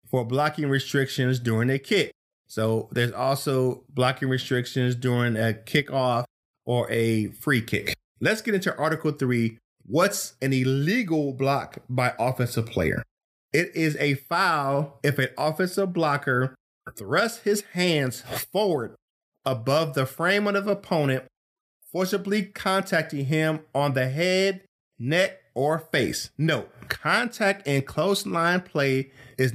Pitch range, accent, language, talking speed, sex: 125-165 Hz, American, English, 130 wpm, male